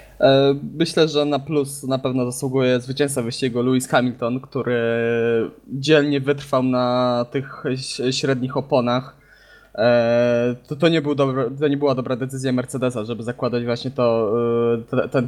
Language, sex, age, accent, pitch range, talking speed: Polish, male, 20-39, native, 125-145 Hz, 135 wpm